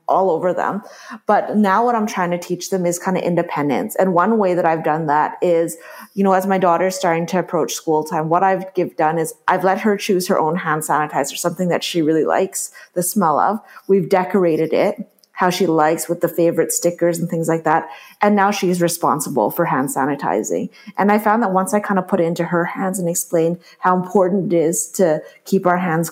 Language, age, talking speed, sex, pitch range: English, 30-49, 225 wpm, female, 165-195 Hz